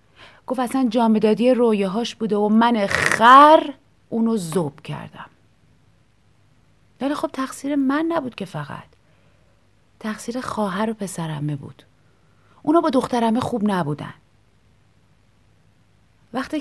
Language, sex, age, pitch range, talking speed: Persian, female, 30-49, 170-255 Hz, 100 wpm